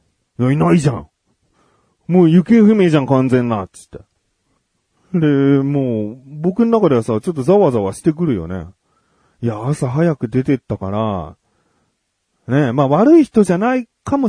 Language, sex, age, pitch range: Japanese, male, 30-49, 110-165 Hz